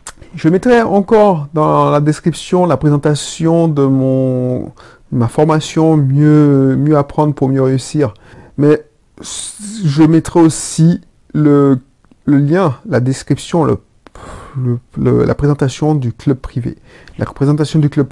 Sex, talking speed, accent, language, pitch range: male, 130 wpm, French, French, 135-165 Hz